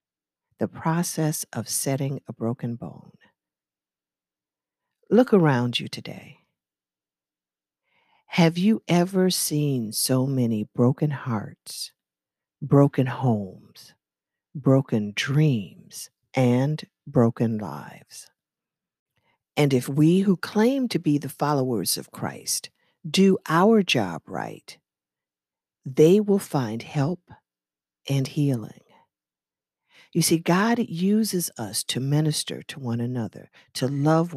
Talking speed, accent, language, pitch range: 105 wpm, American, English, 105-165 Hz